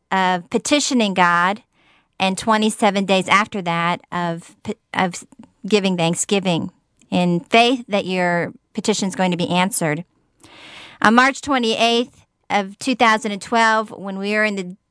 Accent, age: American, 40-59